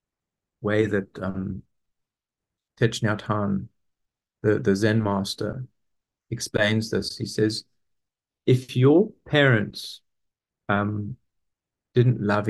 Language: English